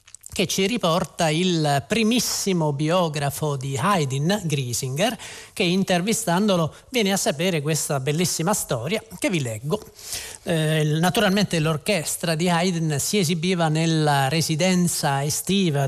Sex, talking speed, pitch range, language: male, 115 wpm, 150-210 Hz, Italian